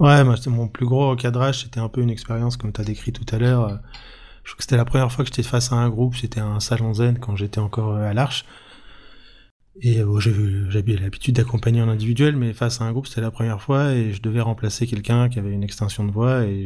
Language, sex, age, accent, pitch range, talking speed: French, male, 20-39, French, 105-120 Hz, 255 wpm